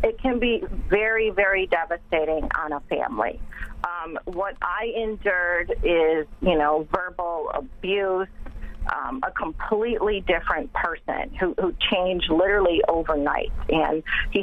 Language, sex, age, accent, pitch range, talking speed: English, female, 40-59, American, 165-210 Hz, 125 wpm